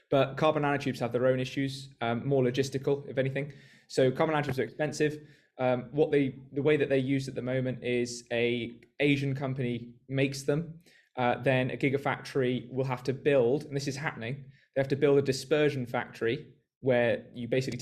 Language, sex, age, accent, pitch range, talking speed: English, male, 20-39, British, 125-145 Hz, 190 wpm